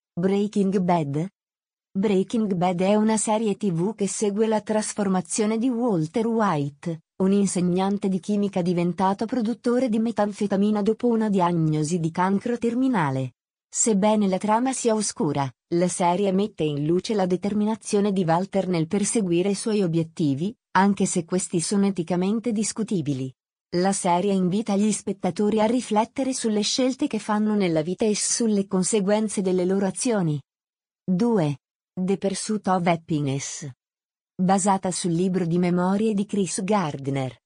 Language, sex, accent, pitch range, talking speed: Italian, female, native, 180-215 Hz, 140 wpm